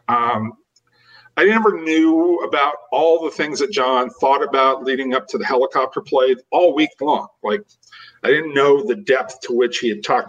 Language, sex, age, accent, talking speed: English, male, 40-59, American, 185 wpm